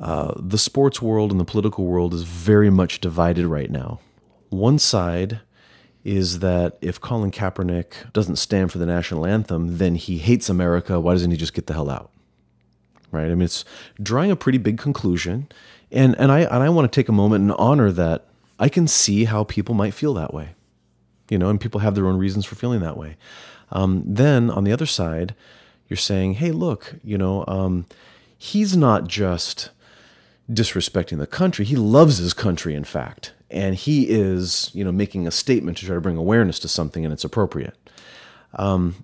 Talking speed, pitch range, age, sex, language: 195 wpm, 85-110 Hz, 30-49, male, English